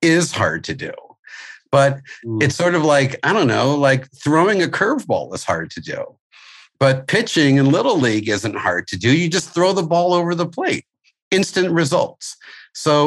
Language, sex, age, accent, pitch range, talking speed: English, male, 50-69, American, 125-165 Hz, 185 wpm